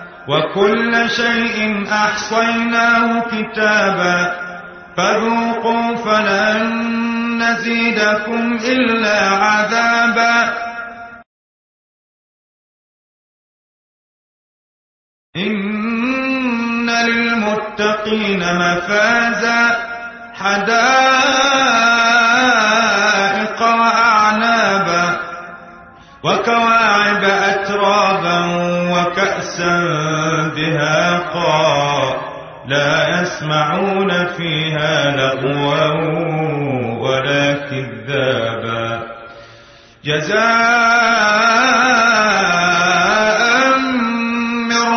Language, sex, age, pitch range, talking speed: English, male, 30-49, 175-230 Hz, 35 wpm